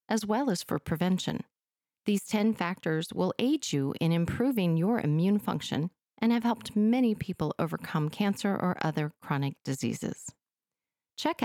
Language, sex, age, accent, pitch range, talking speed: English, female, 40-59, American, 155-220 Hz, 145 wpm